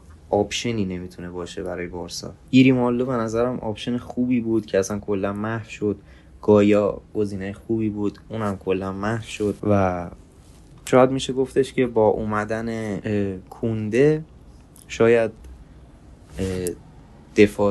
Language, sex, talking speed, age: Persian, male, 115 wpm, 20-39